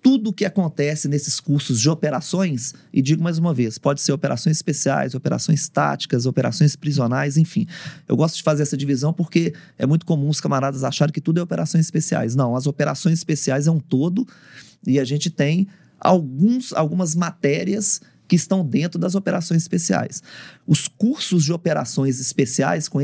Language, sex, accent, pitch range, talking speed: Portuguese, male, Brazilian, 135-170 Hz, 170 wpm